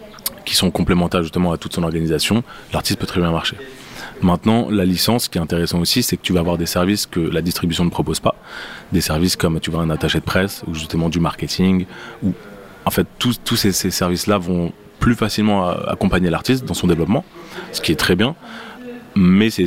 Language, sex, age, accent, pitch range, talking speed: French, male, 30-49, French, 85-105 Hz, 210 wpm